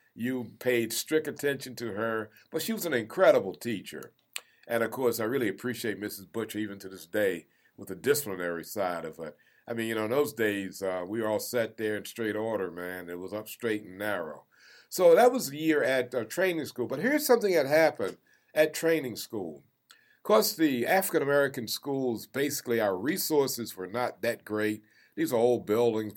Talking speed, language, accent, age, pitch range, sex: 195 wpm, English, American, 60-79, 110-150 Hz, male